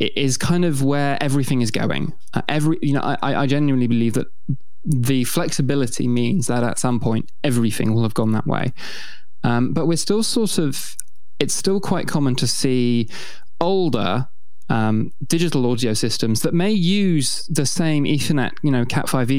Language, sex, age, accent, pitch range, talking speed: English, male, 20-39, British, 120-150 Hz, 175 wpm